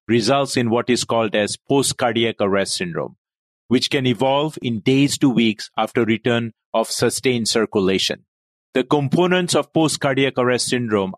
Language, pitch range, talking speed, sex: English, 115-145 Hz, 145 wpm, male